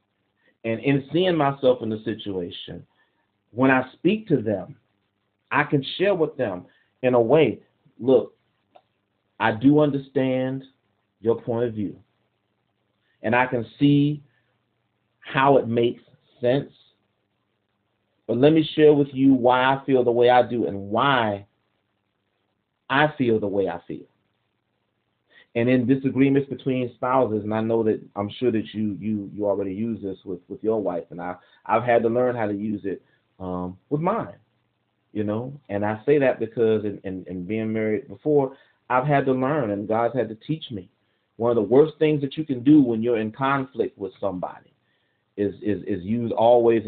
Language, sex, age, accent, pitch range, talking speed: English, male, 40-59, American, 105-130 Hz, 175 wpm